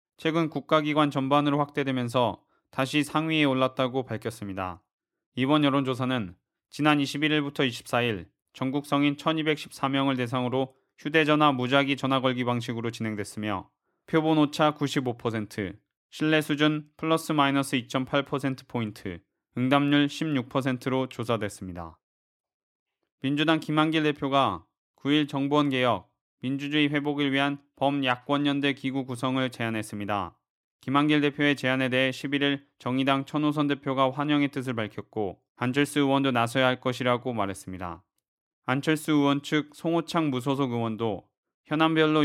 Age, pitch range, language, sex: 20-39, 125-145 Hz, Korean, male